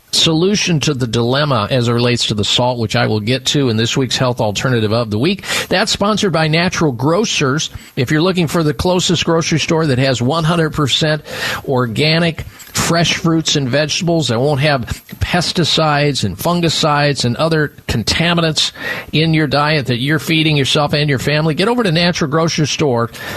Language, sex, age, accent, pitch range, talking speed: English, male, 50-69, American, 125-170 Hz, 175 wpm